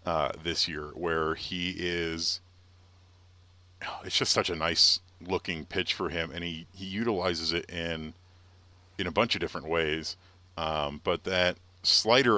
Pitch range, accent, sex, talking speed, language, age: 85-95 Hz, American, male, 150 wpm, English, 40-59